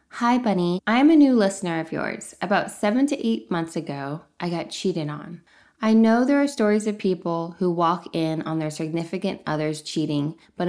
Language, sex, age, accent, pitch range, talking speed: English, female, 20-39, American, 160-195 Hz, 190 wpm